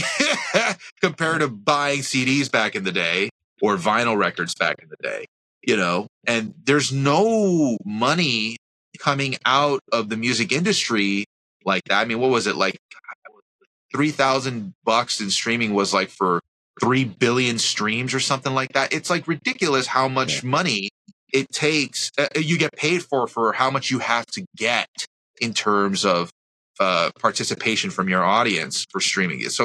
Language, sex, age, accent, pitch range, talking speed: English, male, 30-49, American, 110-150 Hz, 165 wpm